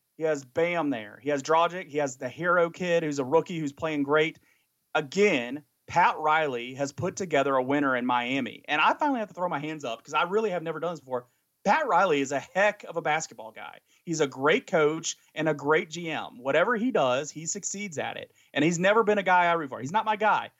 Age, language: 30-49, English